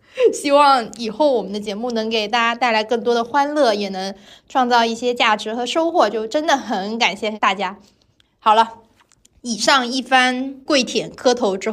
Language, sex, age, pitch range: Chinese, female, 20-39, 220-270 Hz